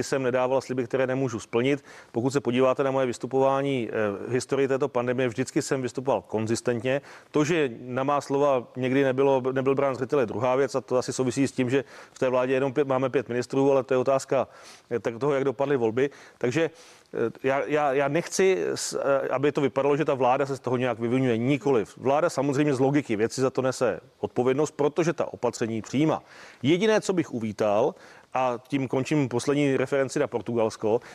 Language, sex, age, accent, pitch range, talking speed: Czech, male, 40-59, native, 130-145 Hz, 185 wpm